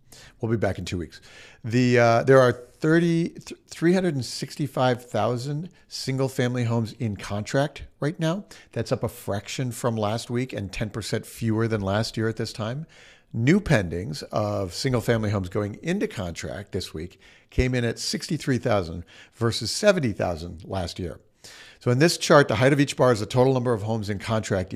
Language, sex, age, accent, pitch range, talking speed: English, male, 50-69, American, 105-130 Hz, 165 wpm